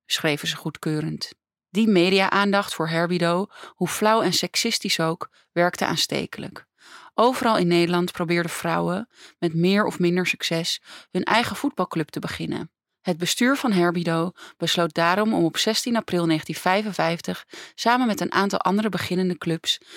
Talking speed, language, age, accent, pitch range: 140 wpm, English, 30-49, Dutch, 170-220 Hz